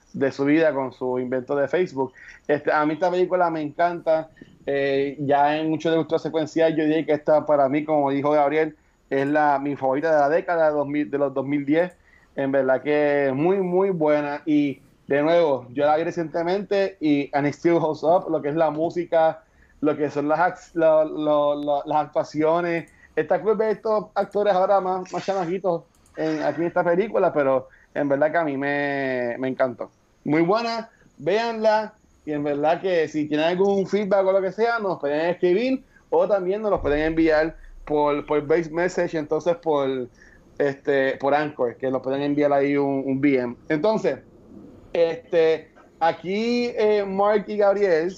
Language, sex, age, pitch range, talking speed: Spanish, male, 30-49, 145-175 Hz, 180 wpm